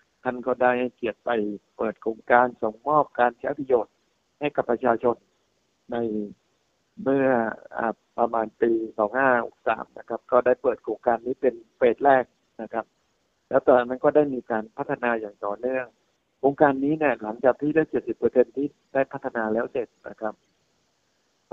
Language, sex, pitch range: Thai, male, 115-135 Hz